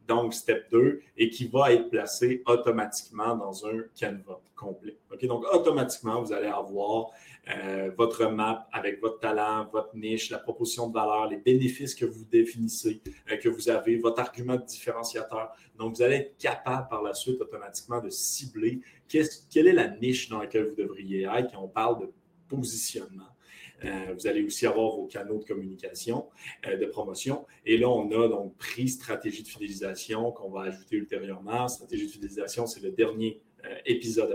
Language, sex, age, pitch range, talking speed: French, male, 30-49, 110-150 Hz, 180 wpm